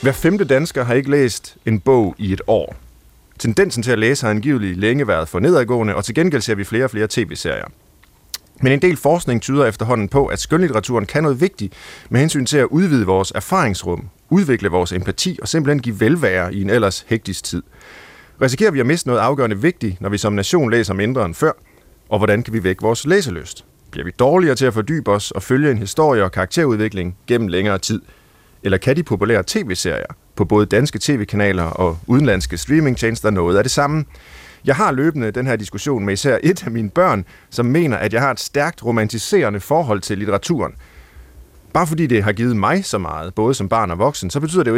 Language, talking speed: Danish, 210 wpm